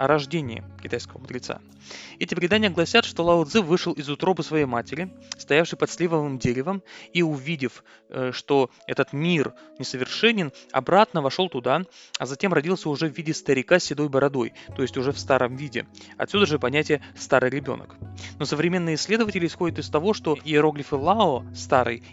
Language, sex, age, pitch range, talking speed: Russian, male, 20-39, 135-170 Hz, 160 wpm